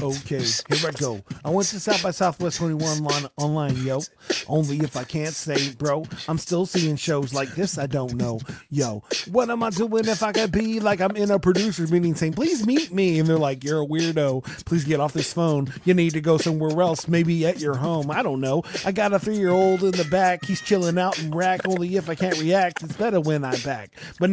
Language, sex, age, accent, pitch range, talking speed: English, male, 40-59, American, 155-195 Hz, 240 wpm